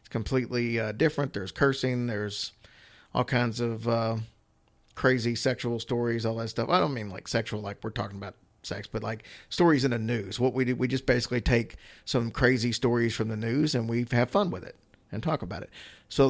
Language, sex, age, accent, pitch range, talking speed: English, male, 40-59, American, 110-130 Hz, 205 wpm